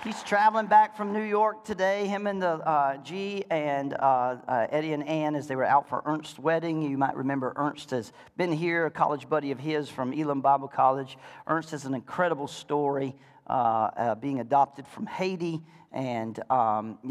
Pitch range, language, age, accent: 135-170 Hz, English, 40-59, American